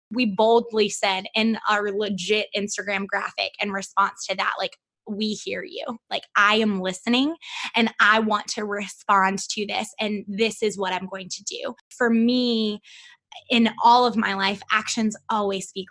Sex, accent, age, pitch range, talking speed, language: female, American, 20-39, 210-245 Hz, 170 wpm, English